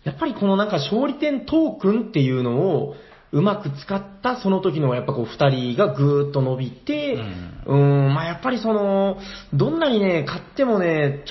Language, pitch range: Japanese, 130-200 Hz